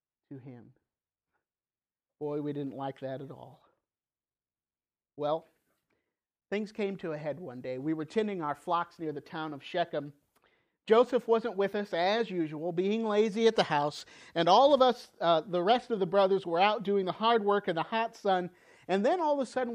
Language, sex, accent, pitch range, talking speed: English, male, American, 150-200 Hz, 195 wpm